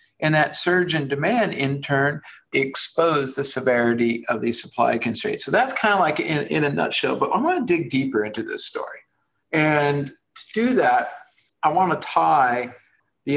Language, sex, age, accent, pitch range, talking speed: English, male, 50-69, American, 125-175 Hz, 175 wpm